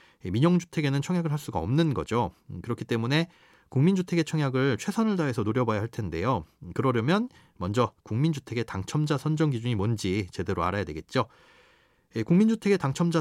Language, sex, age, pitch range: Korean, male, 30-49, 110-170 Hz